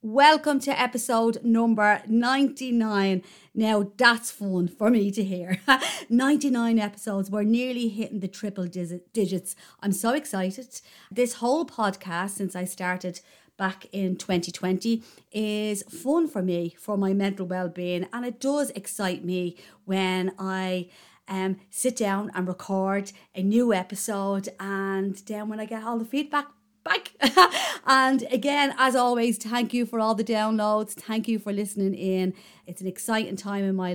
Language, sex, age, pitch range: English, female, 30-49, 185-230 Hz